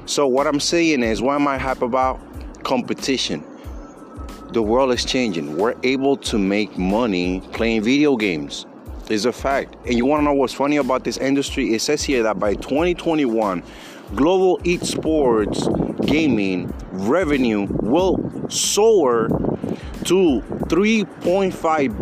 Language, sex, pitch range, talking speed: English, male, 140-200 Hz, 135 wpm